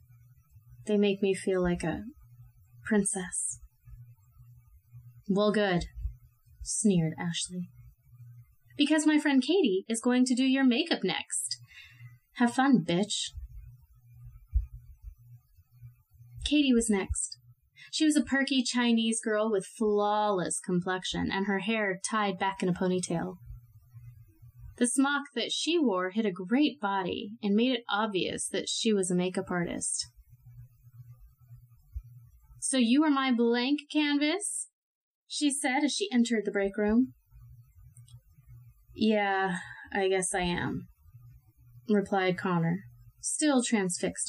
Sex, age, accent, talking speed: female, 20-39, American, 120 wpm